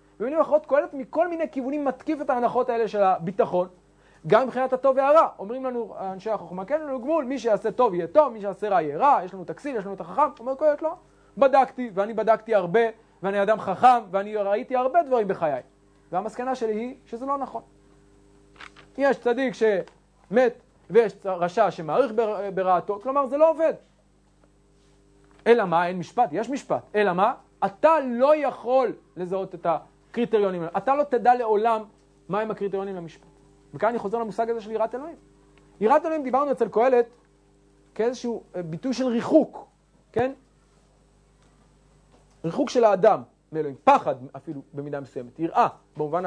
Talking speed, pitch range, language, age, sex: 145 wpm, 195-270 Hz, English, 30-49, male